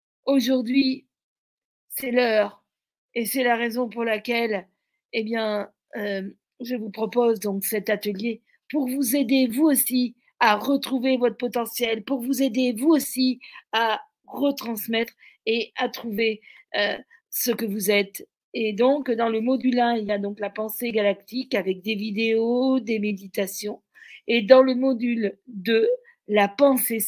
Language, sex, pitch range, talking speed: French, female, 210-260 Hz, 150 wpm